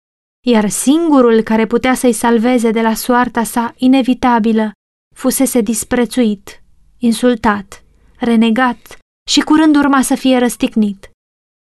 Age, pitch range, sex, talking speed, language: 20-39, 230-275 Hz, female, 110 wpm, Romanian